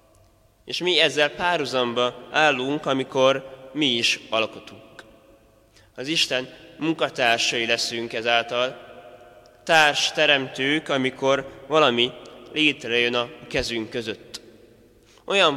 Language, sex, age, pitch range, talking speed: Hungarian, male, 20-39, 120-140 Hz, 90 wpm